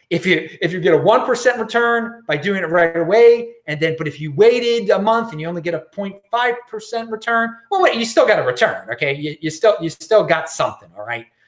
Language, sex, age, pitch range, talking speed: English, male, 30-49, 130-215 Hz, 245 wpm